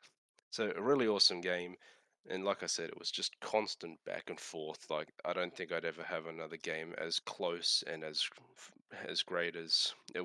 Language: English